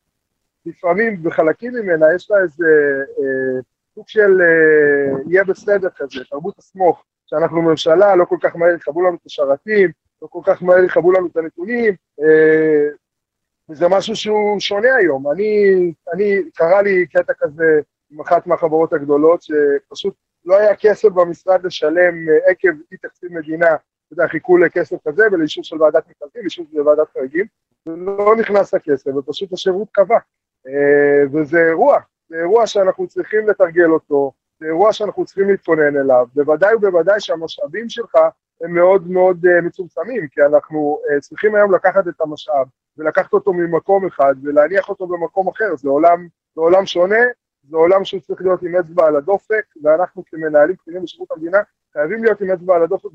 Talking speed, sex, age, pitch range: 160 wpm, male, 20-39, 155-200 Hz